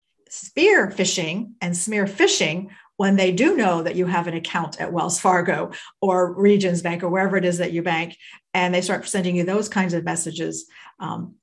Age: 50-69